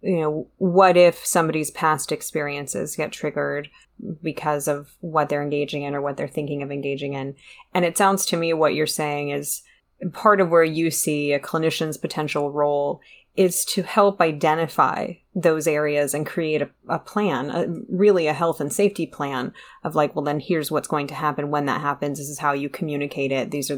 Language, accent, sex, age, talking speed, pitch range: English, American, female, 30-49, 195 wpm, 145-180 Hz